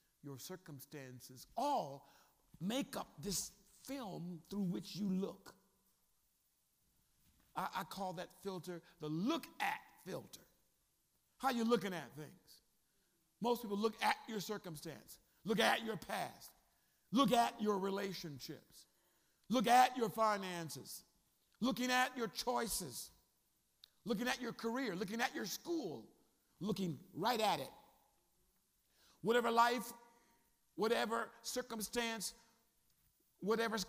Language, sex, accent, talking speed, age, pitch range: English, male, American, 115 wpm, 50-69, 135-225 Hz